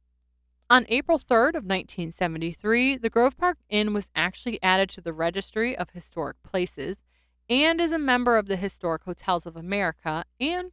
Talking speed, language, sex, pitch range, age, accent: 160 wpm, English, female, 170-250 Hz, 30-49, American